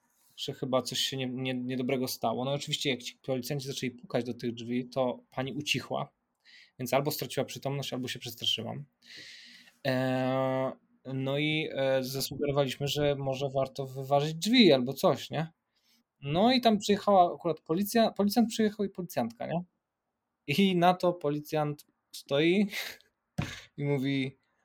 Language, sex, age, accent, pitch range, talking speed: Polish, male, 20-39, native, 130-175 Hz, 140 wpm